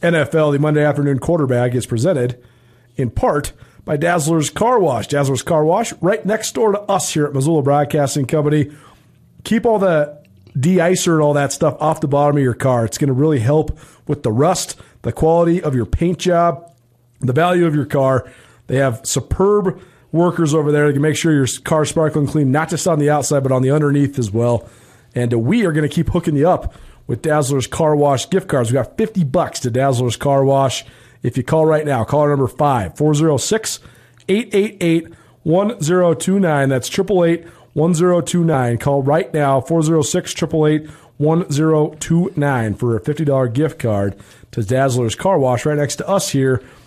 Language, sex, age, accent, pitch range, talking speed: English, male, 40-59, American, 130-165 Hz, 205 wpm